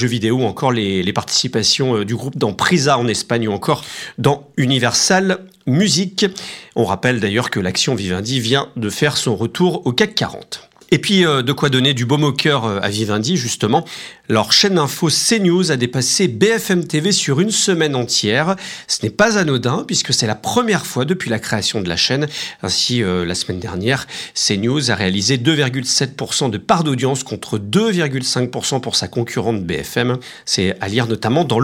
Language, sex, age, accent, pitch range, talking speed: French, male, 40-59, French, 120-170 Hz, 175 wpm